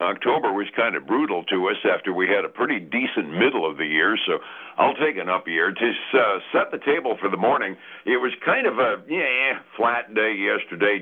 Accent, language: American, English